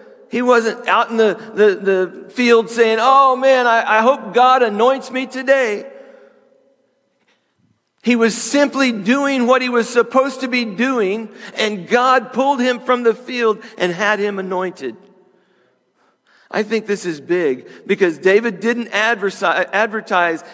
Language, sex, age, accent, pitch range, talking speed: English, male, 50-69, American, 190-245 Hz, 140 wpm